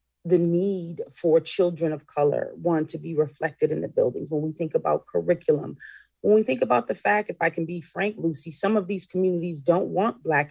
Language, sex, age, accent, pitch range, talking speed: English, female, 40-59, American, 155-180 Hz, 210 wpm